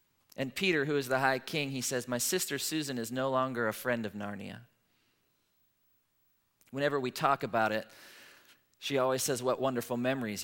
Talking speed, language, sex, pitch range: 170 wpm, English, male, 115-155 Hz